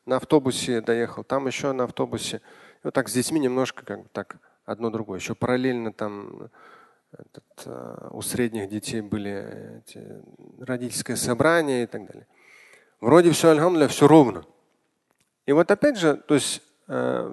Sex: male